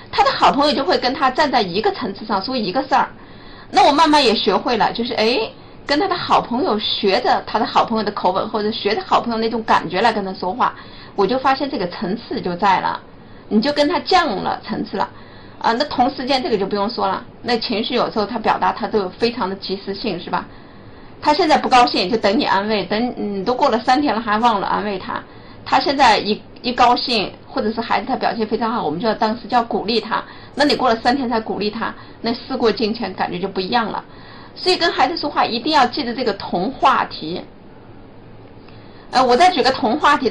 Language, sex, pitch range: Chinese, female, 210-250 Hz